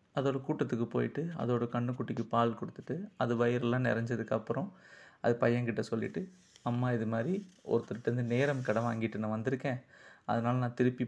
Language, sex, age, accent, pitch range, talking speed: Tamil, male, 30-49, native, 115-125 Hz, 140 wpm